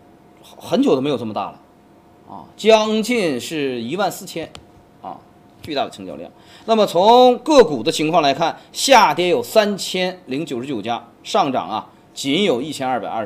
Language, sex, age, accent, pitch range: Chinese, male, 30-49, native, 140-230 Hz